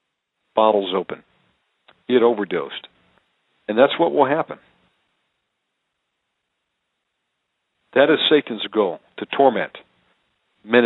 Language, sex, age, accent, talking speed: English, male, 50-69, American, 90 wpm